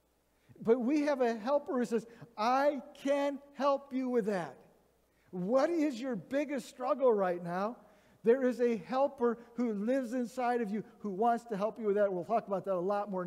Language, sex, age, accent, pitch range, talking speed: English, male, 50-69, American, 170-245 Hz, 195 wpm